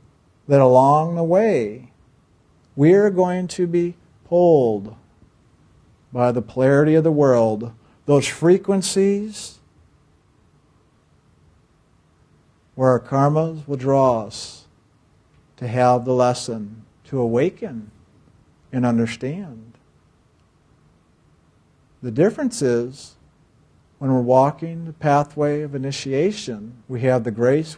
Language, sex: English, male